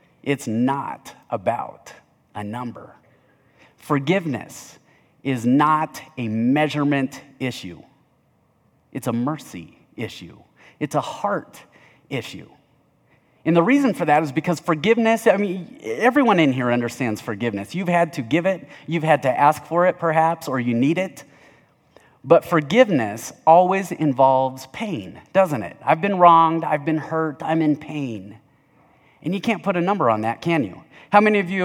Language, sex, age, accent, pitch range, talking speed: English, male, 30-49, American, 135-180 Hz, 150 wpm